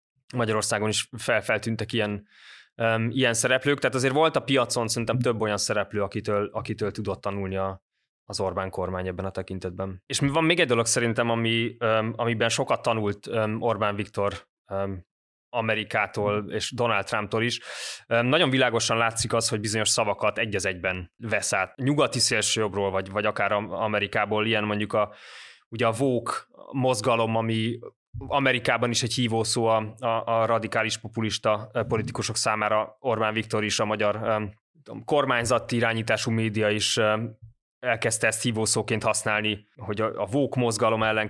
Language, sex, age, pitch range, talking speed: Hungarian, male, 20-39, 105-120 Hz, 145 wpm